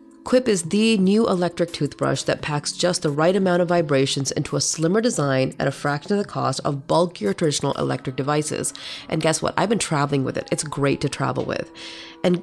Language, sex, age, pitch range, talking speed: English, female, 30-49, 145-195 Hz, 210 wpm